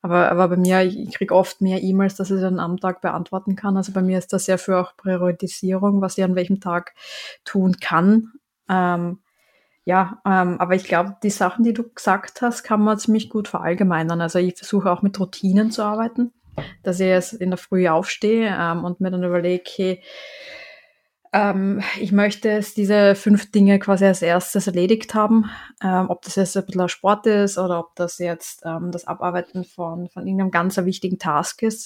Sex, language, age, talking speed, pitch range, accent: female, German, 20-39, 195 wpm, 180-210 Hz, German